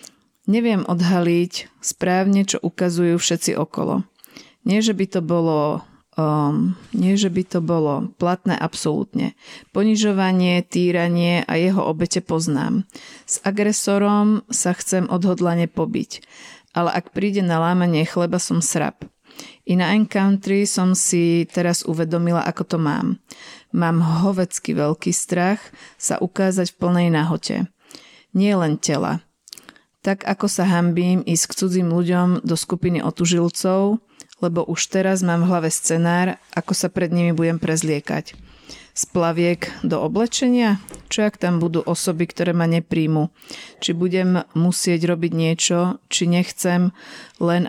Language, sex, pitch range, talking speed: Slovak, female, 170-190 Hz, 130 wpm